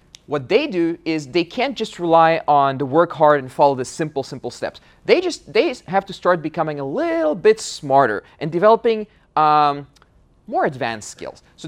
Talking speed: 185 wpm